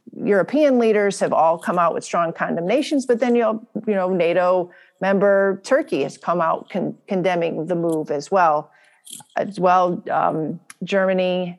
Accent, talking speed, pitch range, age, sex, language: American, 160 wpm, 175-210 Hz, 40-59, female, English